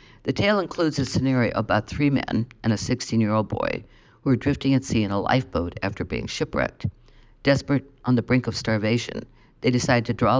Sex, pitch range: female, 110-135 Hz